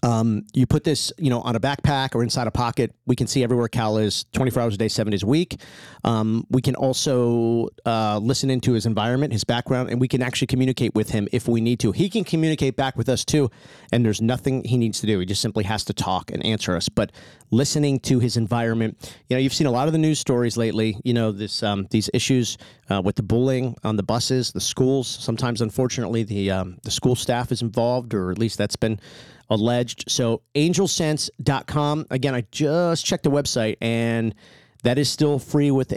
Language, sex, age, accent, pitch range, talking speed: English, male, 40-59, American, 110-130 Hz, 220 wpm